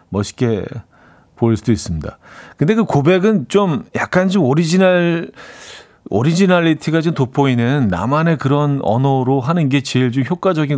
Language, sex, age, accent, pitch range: Korean, male, 40-59, native, 110-145 Hz